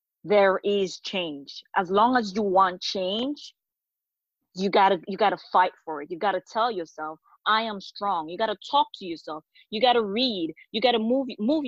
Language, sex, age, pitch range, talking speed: English, female, 30-49, 205-270 Hz, 210 wpm